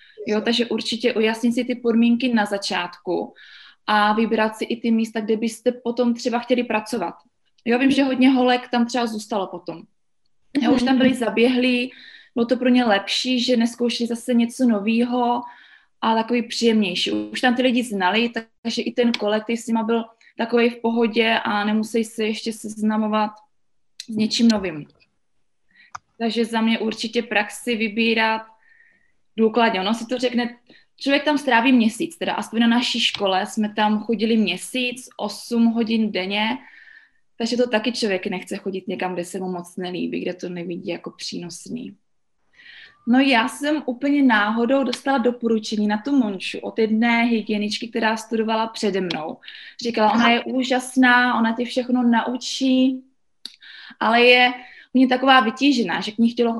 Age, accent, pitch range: 20-39, native, 215-250 Hz